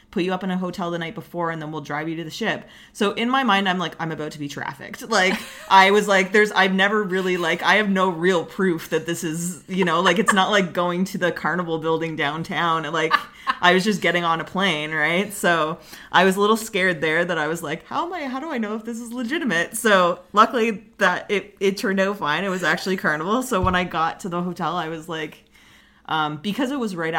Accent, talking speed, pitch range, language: American, 255 wpm, 155-195 Hz, English